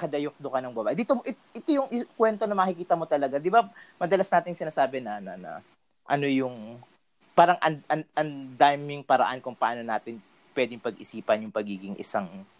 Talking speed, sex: 165 wpm, male